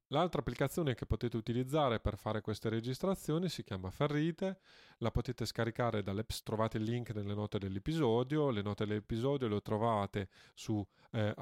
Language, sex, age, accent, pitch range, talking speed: Italian, male, 30-49, native, 105-135 Hz, 155 wpm